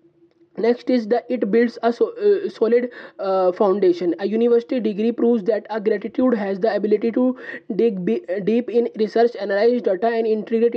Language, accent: English, Indian